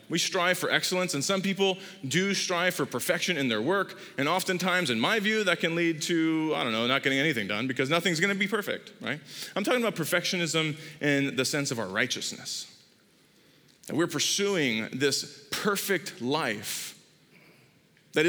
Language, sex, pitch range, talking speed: English, male, 145-185 Hz, 170 wpm